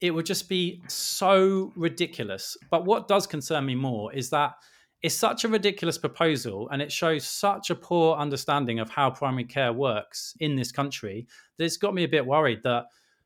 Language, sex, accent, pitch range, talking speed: English, male, British, 125-170 Hz, 190 wpm